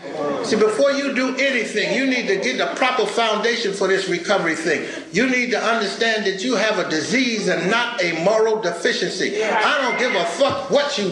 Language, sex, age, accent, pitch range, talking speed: English, male, 60-79, American, 190-235 Hz, 200 wpm